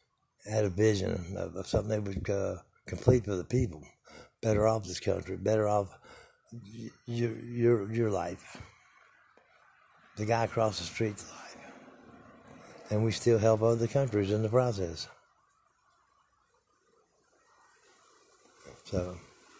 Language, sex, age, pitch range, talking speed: English, male, 60-79, 100-120 Hz, 120 wpm